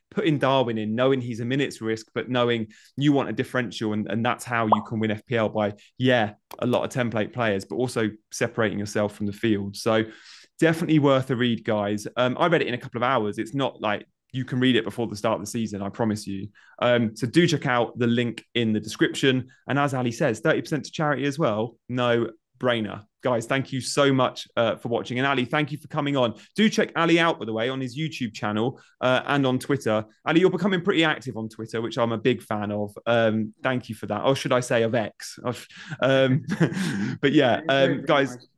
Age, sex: 20-39, male